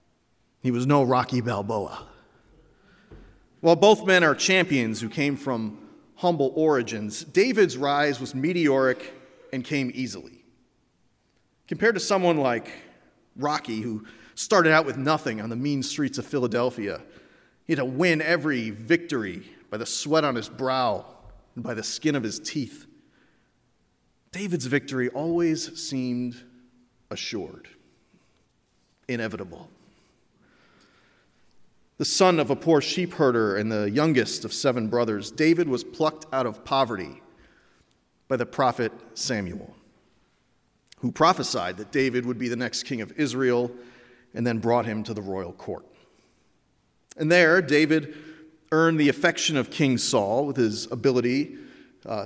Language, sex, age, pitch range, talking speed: English, male, 40-59, 120-155 Hz, 135 wpm